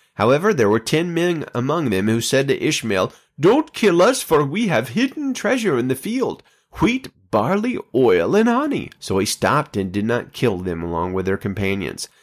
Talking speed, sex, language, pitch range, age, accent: 190 wpm, male, English, 105-130 Hz, 30-49, American